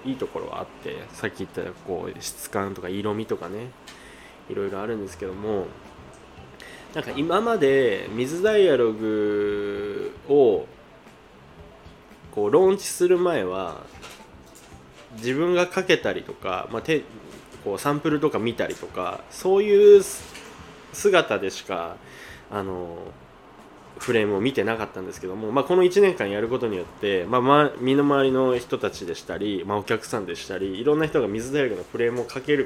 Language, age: Japanese, 20-39